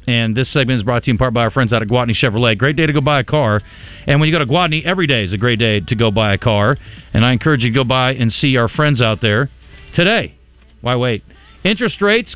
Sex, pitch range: male, 125-170 Hz